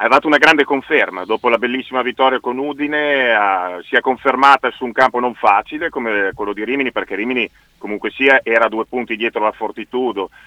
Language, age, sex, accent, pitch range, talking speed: Italian, 40-59, male, native, 115-135 Hz, 195 wpm